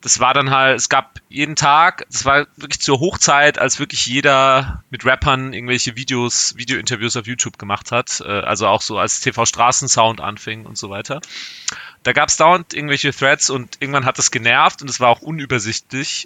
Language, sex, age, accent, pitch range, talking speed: German, male, 30-49, German, 105-130 Hz, 185 wpm